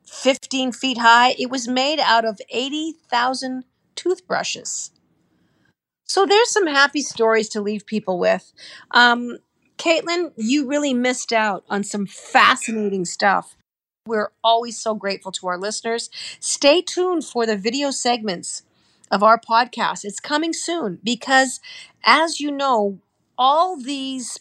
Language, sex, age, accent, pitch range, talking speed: English, female, 50-69, American, 205-275 Hz, 135 wpm